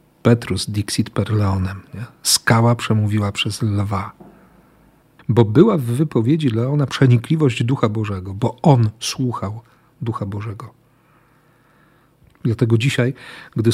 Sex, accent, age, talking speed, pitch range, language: male, native, 50-69, 105 wpm, 110-145 Hz, Polish